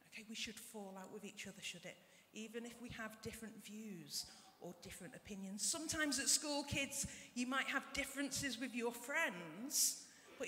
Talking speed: 170 wpm